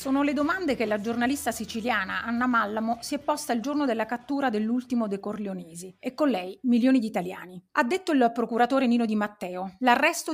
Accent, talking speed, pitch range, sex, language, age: native, 190 wpm, 220-275 Hz, female, Italian, 30-49